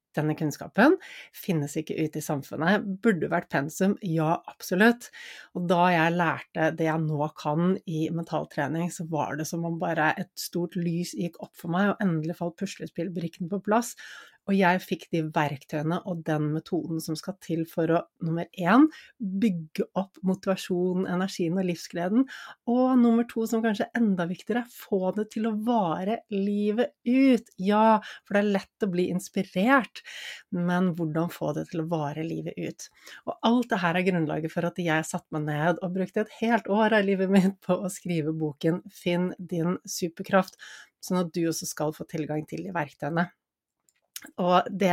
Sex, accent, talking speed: female, Swedish, 180 wpm